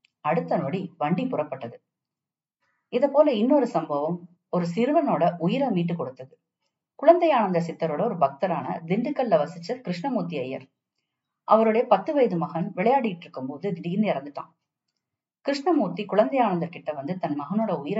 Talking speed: 120 wpm